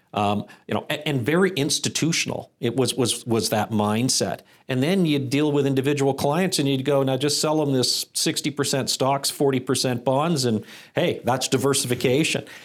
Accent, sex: American, male